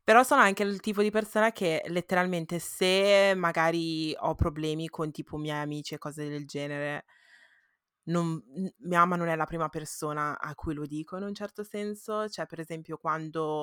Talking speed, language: 180 wpm, Italian